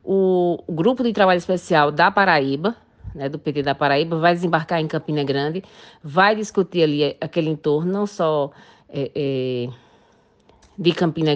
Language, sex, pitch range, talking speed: Portuguese, female, 150-195 Hz, 150 wpm